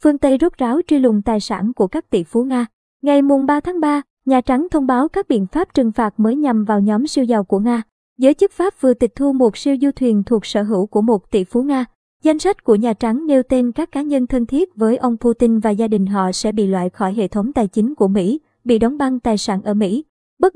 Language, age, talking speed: Vietnamese, 20-39, 265 wpm